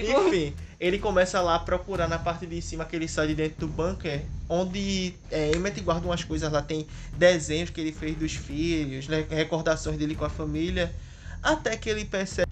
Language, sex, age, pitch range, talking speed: Portuguese, male, 20-39, 155-185 Hz, 195 wpm